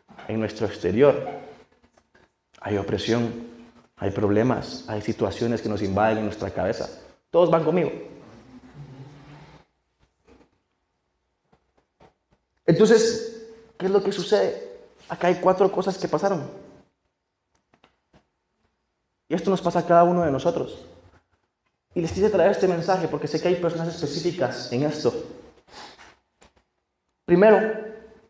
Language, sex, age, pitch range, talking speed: Spanish, male, 30-49, 110-175 Hz, 115 wpm